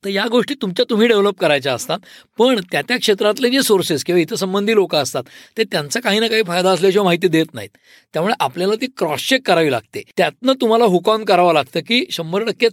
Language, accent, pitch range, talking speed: Marathi, native, 160-220 Hz, 205 wpm